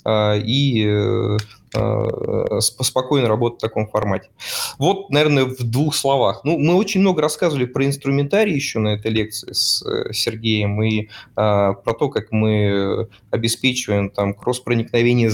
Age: 20-39